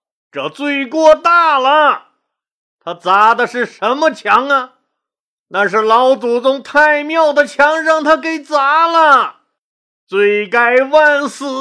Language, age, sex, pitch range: Chinese, 50-69, male, 170-255 Hz